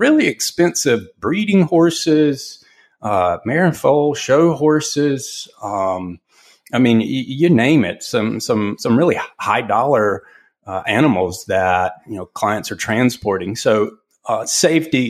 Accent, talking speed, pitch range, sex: American, 135 wpm, 95-125 Hz, male